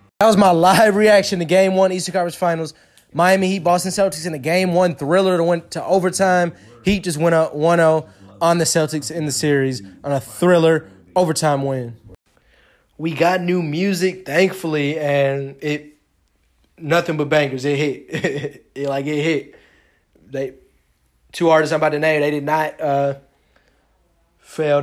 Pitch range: 135-175 Hz